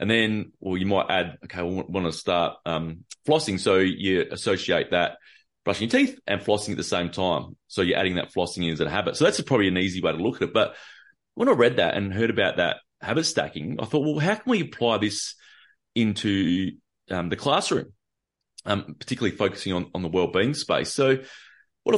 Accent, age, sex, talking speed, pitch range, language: Australian, 30-49, male, 220 wpm, 90-115 Hz, English